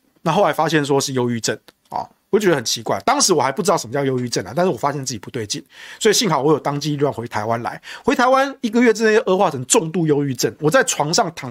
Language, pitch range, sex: Chinese, 130-190 Hz, male